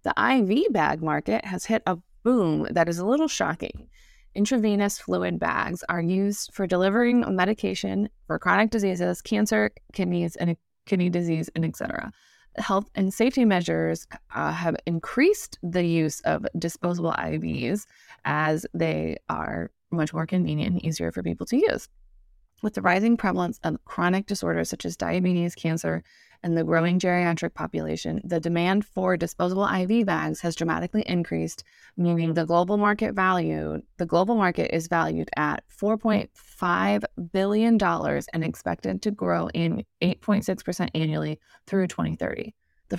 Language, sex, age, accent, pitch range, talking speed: English, female, 20-39, American, 155-205 Hz, 150 wpm